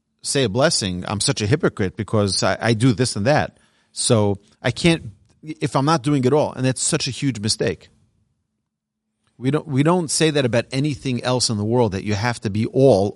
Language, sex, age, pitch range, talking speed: English, male, 40-59, 105-140 Hz, 215 wpm